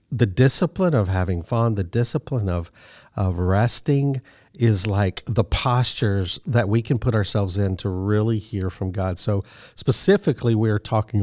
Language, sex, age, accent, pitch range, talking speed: English, male, 50-69, American, 100-120 Hz, 160 wpm